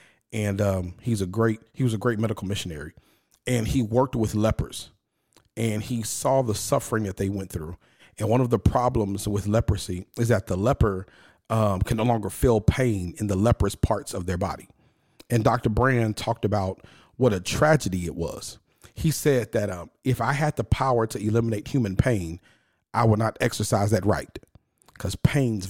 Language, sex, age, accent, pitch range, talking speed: English, male, 40-59, American, 100-120 Hz, 185 wpm